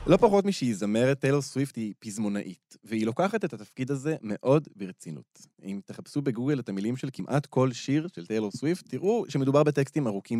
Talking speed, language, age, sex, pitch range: 180 wpm, Hebrew, 20-39, male, 110-155 Hz